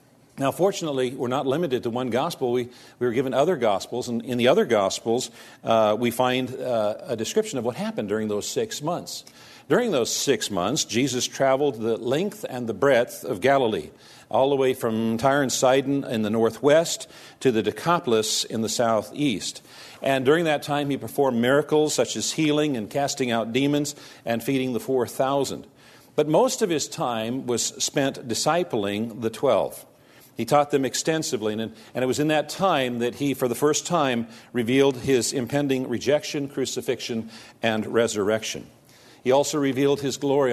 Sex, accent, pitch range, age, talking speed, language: male, American, 115-140 Hz, 50-69, 175 wpm, English